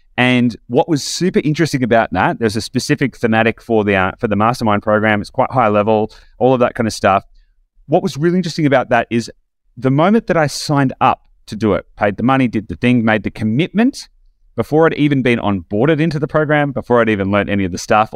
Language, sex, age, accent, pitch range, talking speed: English, male, 30-49, Australian, 110-135 Hz, 230 wpm